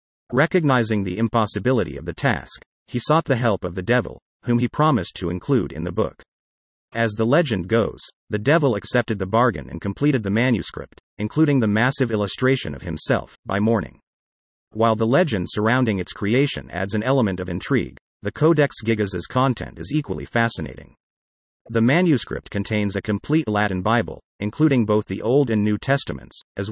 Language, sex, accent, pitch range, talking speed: English, male, American, 100-130 Hz, 170 wpm